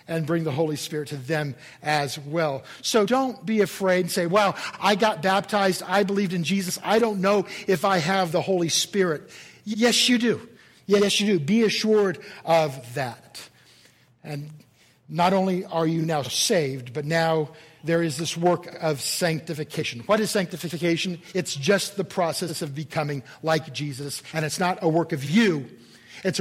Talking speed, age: 175 wpm, 50-69